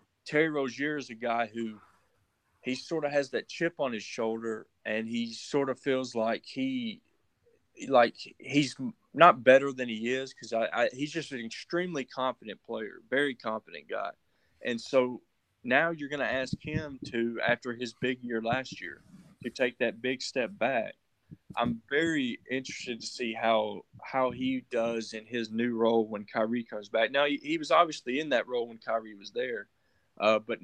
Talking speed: 180 wpm